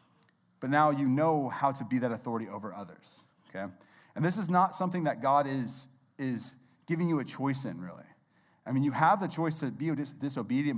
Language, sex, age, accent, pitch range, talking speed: English, male, 30-49, American, 130-155 Hz, 200 wpm